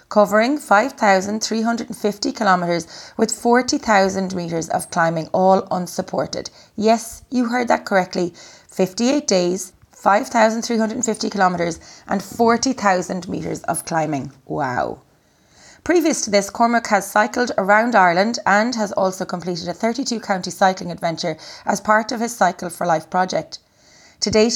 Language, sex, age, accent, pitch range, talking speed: English, female, 30-49, Irish, 180-225 Hz, 125 wpm